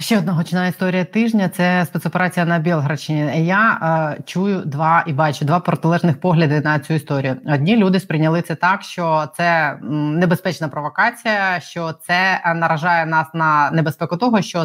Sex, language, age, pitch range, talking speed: female, Ukrainian, 20-39, 155-180 Hz, 155 wpm